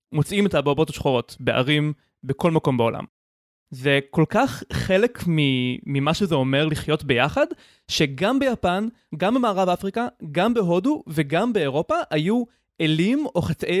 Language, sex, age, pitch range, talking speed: Hebrew, male, 20-39, 150-210 Hz, 130 wpm